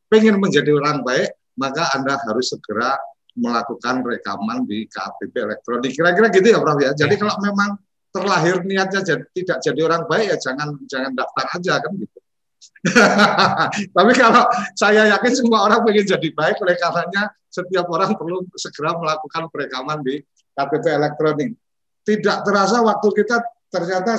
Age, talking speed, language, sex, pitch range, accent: 50-69, 150 wpm, Indonesian, male, 125-185 Hz, native